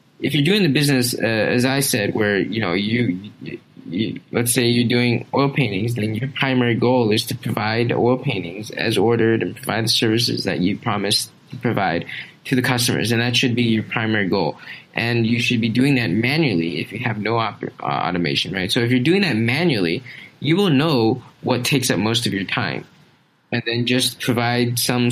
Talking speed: 205 wpm